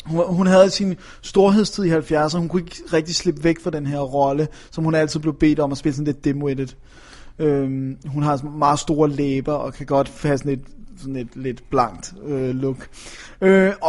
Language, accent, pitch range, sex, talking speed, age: Danish, native, 135-170 Hz, male, 200 wpm, 20-39